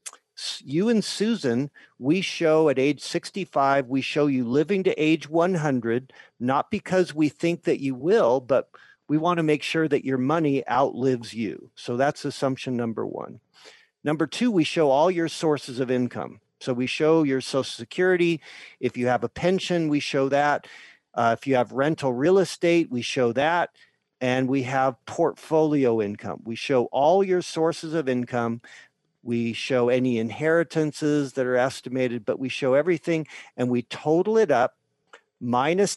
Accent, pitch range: American, 125-160 Hz